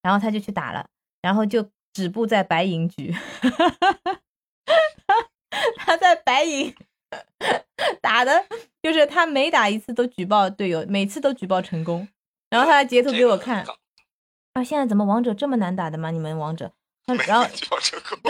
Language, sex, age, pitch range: Chinese, female, 20-39, 205-300 Hz